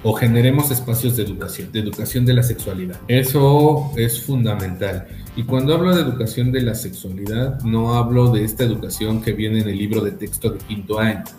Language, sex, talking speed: Spanish, male, 190 wpm